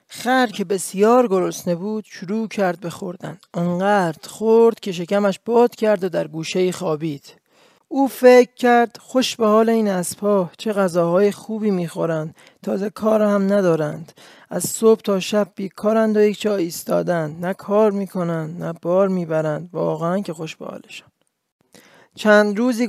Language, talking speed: English, 155 wpm